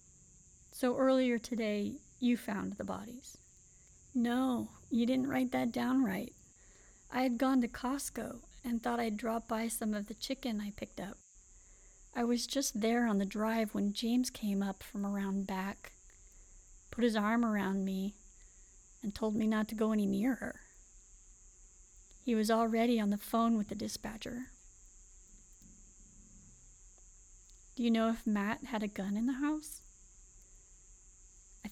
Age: 40-59